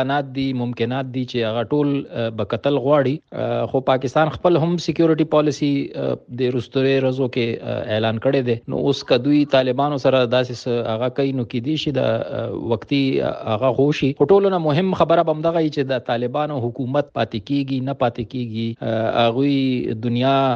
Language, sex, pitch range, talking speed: Urdu, male, 125-170 Hz, 40 wpm